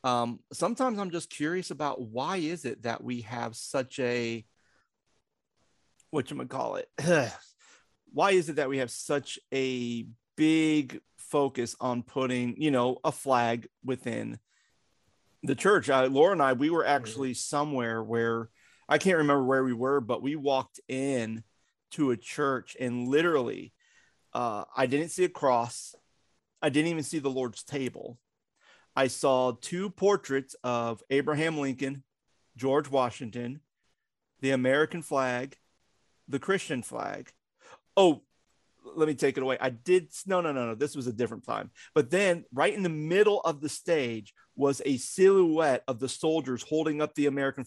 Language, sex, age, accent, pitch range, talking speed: English, male, 40-59, American, 125-160 Hz, 150 wpm